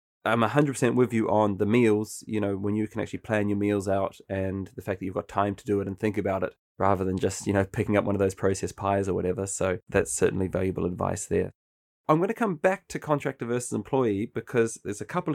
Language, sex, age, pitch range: English, male, 20-39, 100-120 Hz